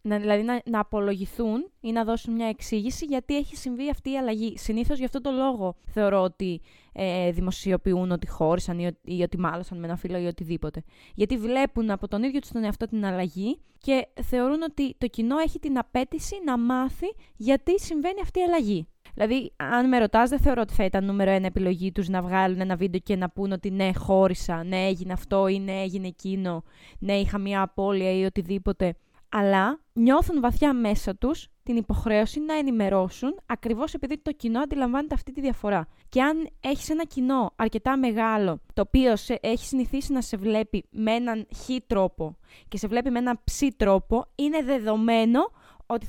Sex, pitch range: female, 195-270 Hz